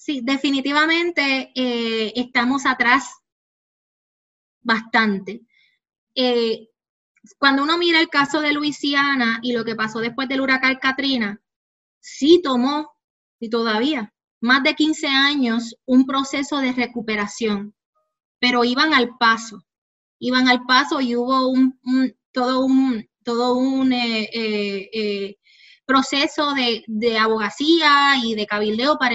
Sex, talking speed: female, 125 wpm